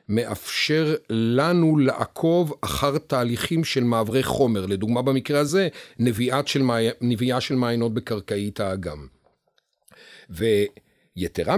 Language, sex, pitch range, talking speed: English, male, 110-145 Hz, 95 wpm